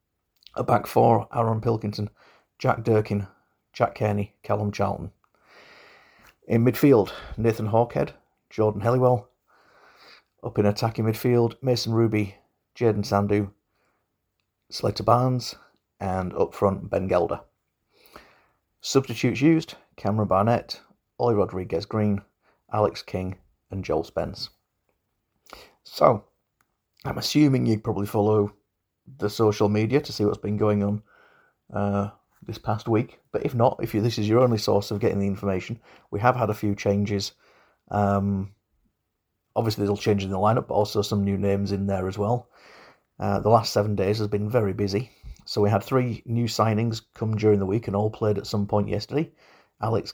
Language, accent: English, British